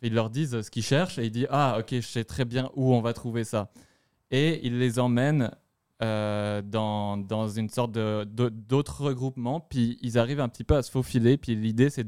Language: French